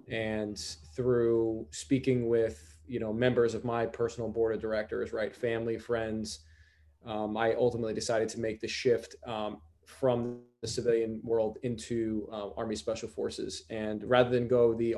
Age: 20-39